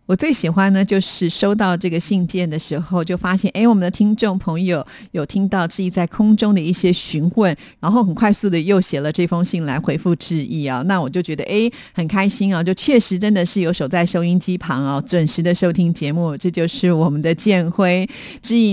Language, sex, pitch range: Chinese, female, 175-215 Hz